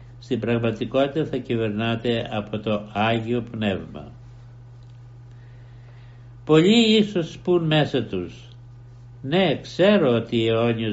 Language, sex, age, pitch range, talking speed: Greek, male, 60-79, 115-130 Hz, 100 wpm